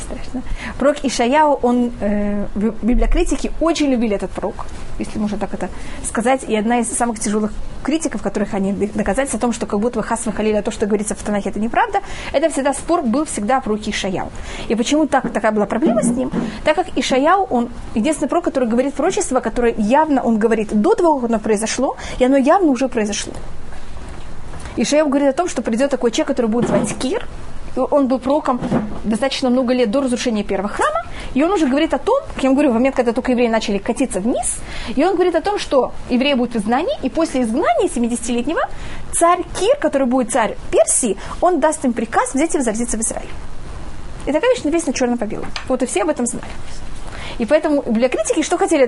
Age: 20-39